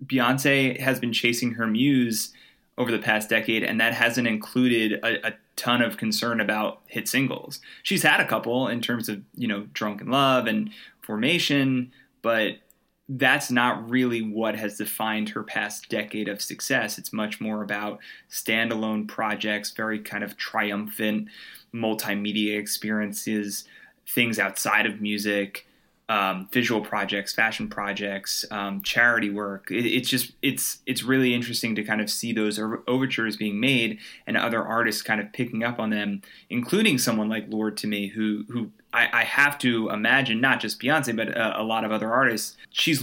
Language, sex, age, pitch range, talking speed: English, male, 20-39, 105-125 Hz, 165 wpm